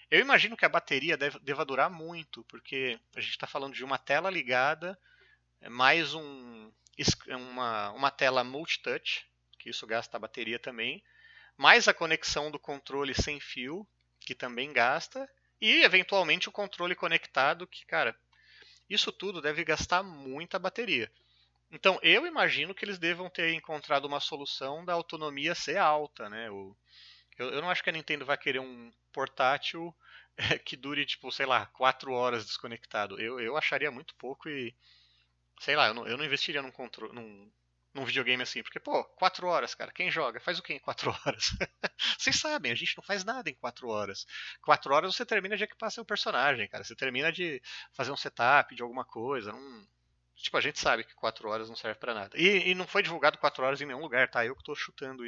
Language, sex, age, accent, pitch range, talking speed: Portuguese, male, 30-49, Brazilian, 125-175 Hz, 185 wpm